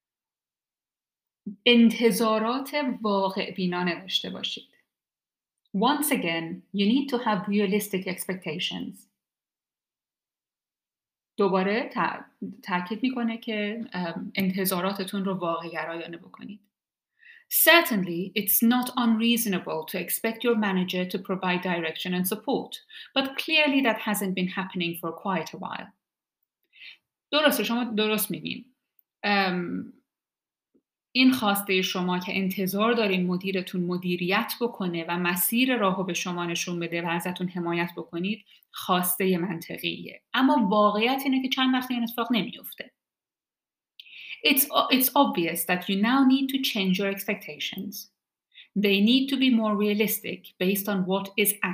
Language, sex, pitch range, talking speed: Persian, female, 185-240 Hz, 100 wpm